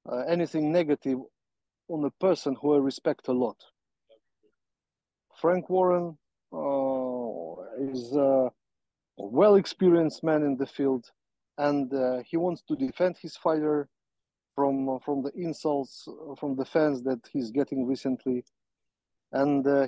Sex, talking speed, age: male, 125 wpm, 40-59